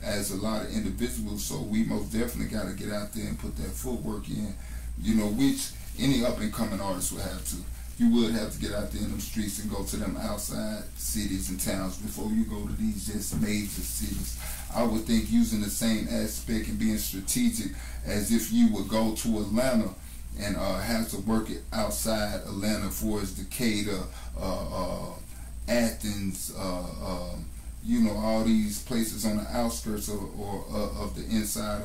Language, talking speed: English, 190 wpm